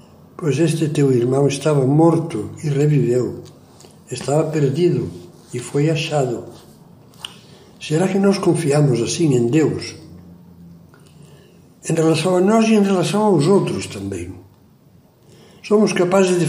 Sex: male